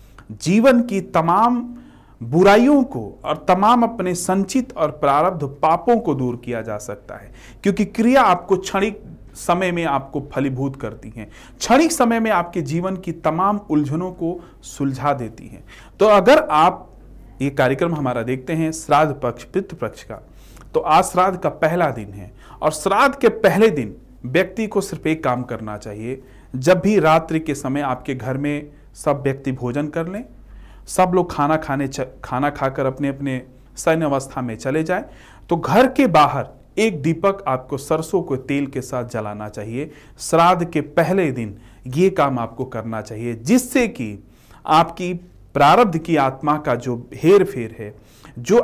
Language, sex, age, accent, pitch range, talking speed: Hindi, male, 40-59, native, 125-185 Hz, 165 wpm